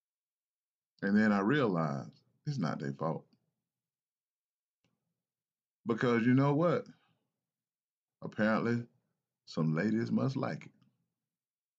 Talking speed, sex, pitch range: 90 wpm, male, 110-150 Hz